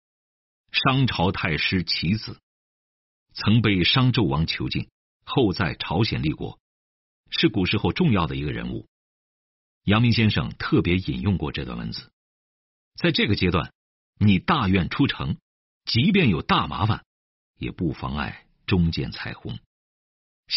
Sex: male